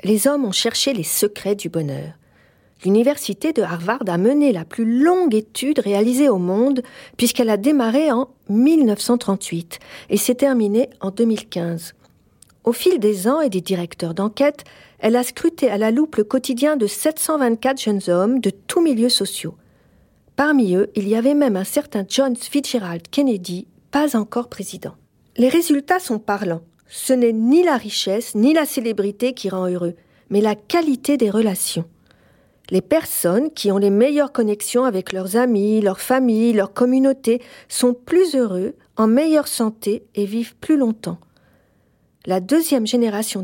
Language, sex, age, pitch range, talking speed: French, female, 40-59, 205-275 Hz, 160 wpm